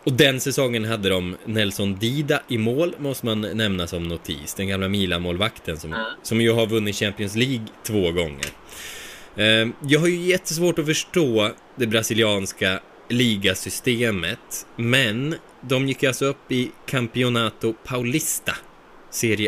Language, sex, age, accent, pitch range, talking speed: Swedish, male, 20-39, native, 95-130 Hz, 140 wpm